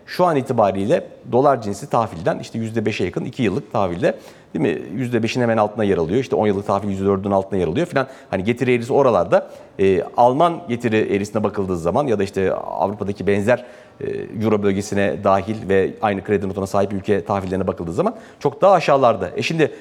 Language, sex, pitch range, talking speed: Turkish, male, 115-185 Hz, 185 wpm